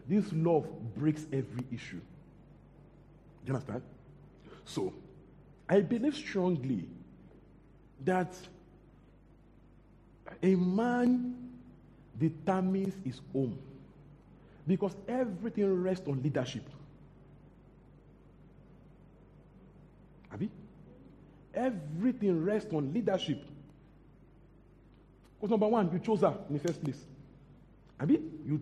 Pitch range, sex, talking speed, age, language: 145-190 Hz, male, 80 wpm, 50-69, English